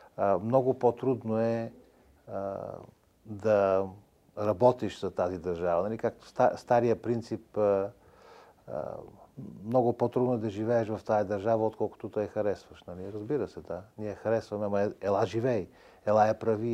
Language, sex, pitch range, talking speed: Bulgarian, male, 100-115 Hz, 145 wpm